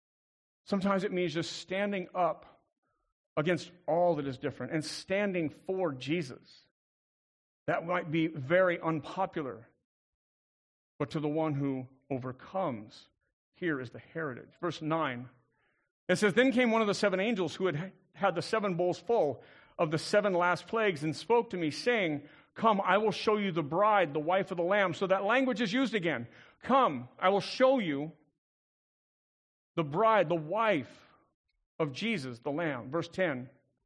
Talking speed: 160 wpm